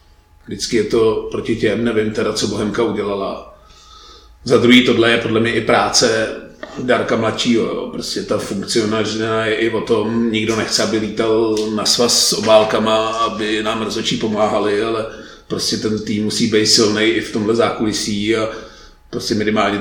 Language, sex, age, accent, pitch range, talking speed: Czech, male, 40-59, native, 105-115 Hz, 160 wpm